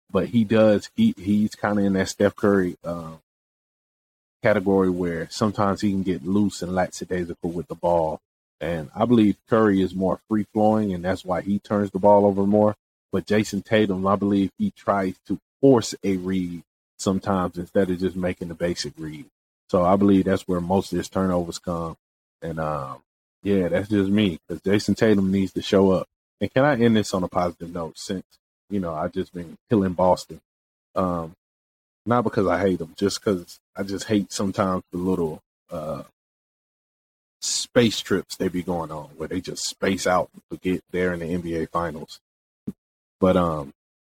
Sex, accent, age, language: male, American, 30-49, English